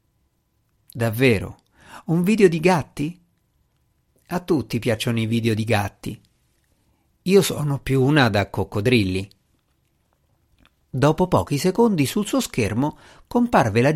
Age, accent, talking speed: 50-69, native, 110 wpm